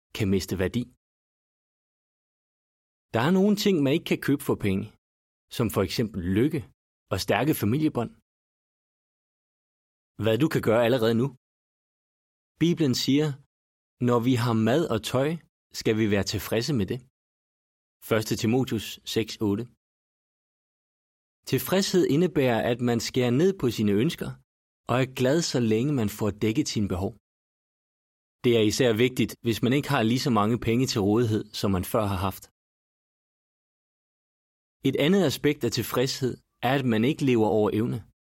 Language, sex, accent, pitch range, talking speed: Danish, male, native, 100-130 Hz, 145 wpm